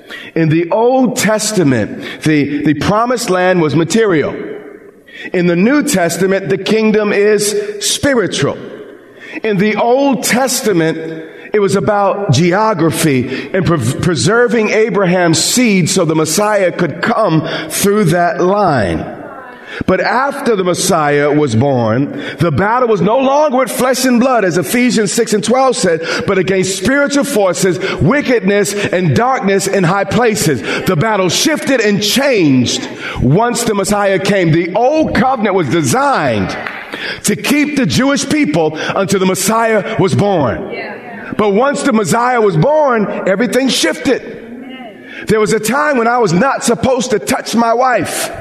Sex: male